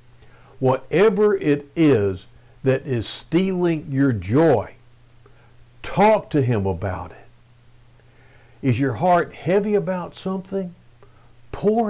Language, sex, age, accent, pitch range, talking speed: English, male, 60-79, American, 120-165 Hz, 100 wpm